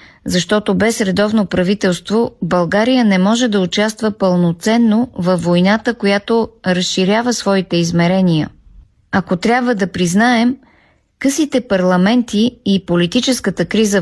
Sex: female